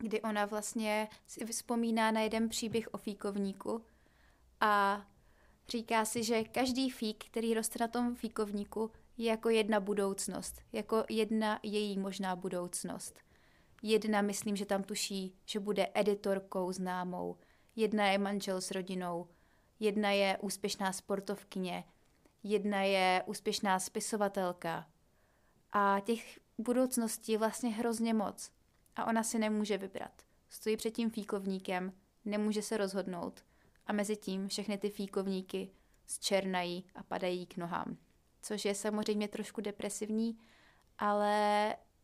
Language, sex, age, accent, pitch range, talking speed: Czech, female, 20-39, native, 195-220 Hz, 125 wpm